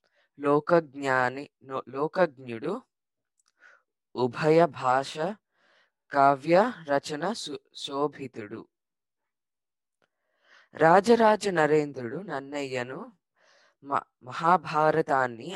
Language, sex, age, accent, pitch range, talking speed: Telugu, female, 20-39, native, 140-170 Hz, 40 wpm